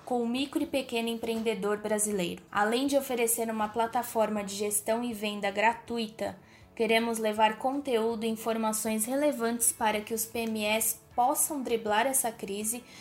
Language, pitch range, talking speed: Portuguese, 220-245 Hz, 145 wpm